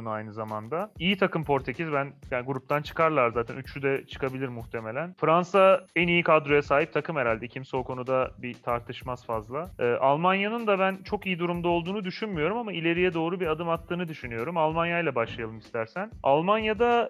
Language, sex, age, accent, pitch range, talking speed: Turkish, male, 30-49, native, 135-185 Hz, 165 wpm